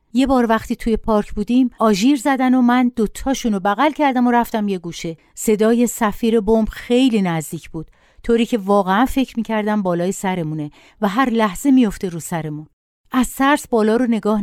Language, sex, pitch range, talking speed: Persian, female, 190-240 Hz, 170 wpm